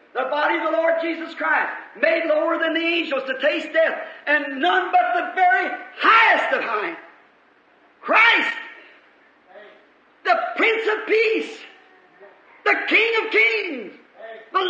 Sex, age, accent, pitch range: male, 50-69, American, 315-395 Hz